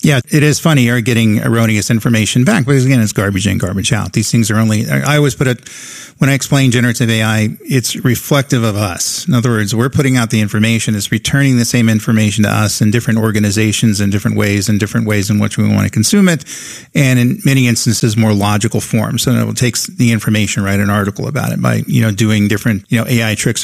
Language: English